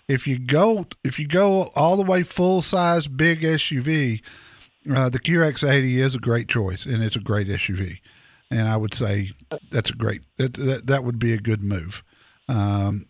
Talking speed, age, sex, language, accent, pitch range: 190 wpm, 50-69, male, English, American, 110-150 Hz